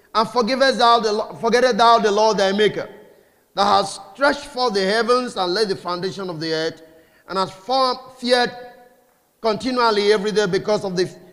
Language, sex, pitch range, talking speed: English, male, 205-250 Hz, 160 wpm